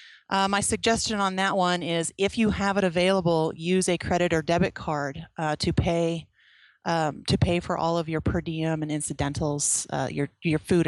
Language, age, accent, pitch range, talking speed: English, 30-49, American, 155-185 Hz, 200 wpm